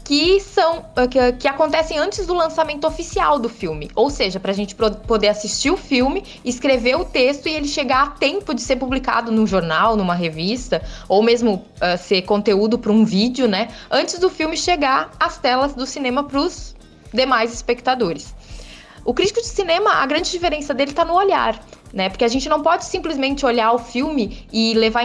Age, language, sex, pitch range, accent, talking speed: 20-39, Portuguese, female, 215-300 Hz, Brazilian, 180 wpm